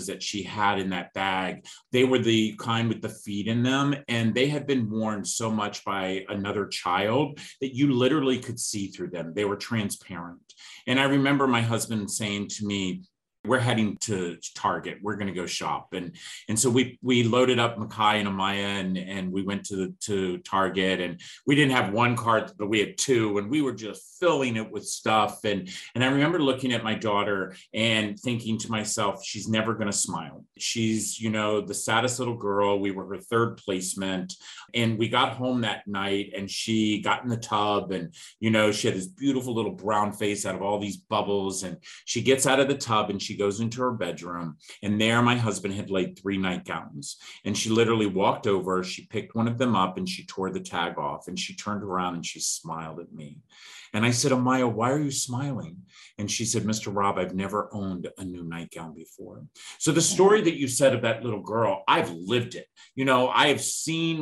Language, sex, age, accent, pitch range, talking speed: English, male, 40-59, American, 100-125 Hz, 210 wpm